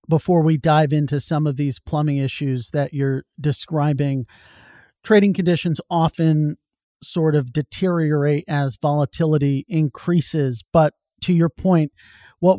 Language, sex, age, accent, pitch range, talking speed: English, male, 40-59, American, 140-165 Hz, 125 wpm